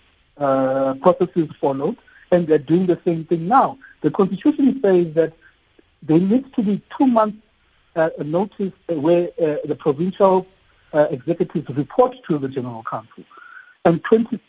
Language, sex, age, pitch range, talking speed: English, male, 60-79, 145-200 Hz, 135 wpm